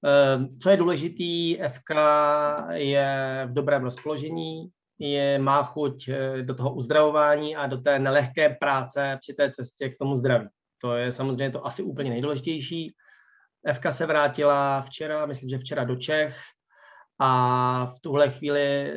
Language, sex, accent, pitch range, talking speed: Czech, male, native, 135-155 Hz, 140 wpm